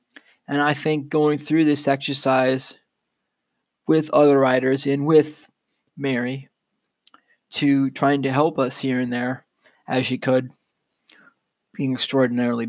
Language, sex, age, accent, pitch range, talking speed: English, male, 20-39, American, 130-150 Hz, 125 wpm